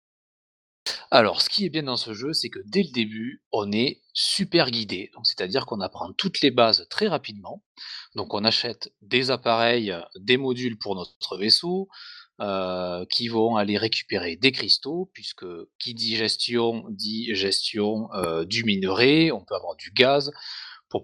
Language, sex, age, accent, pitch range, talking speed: French, male, 30-49, French, 105-150 Hz, 165 wpm